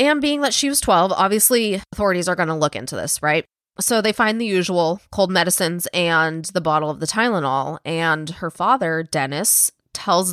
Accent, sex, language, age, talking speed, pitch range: American, female, English, 20-39, 185 wpm, 155-185 Hz